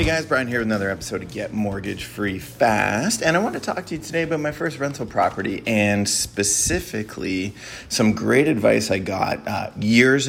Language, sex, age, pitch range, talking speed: English, male, 30-49, 100-135 Hz, 200 wpm